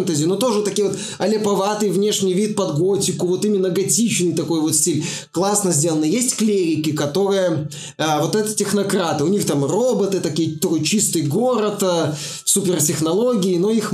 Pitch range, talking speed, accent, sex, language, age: 160-205 Hz, 155 wpm, native, male, Russian, 20-39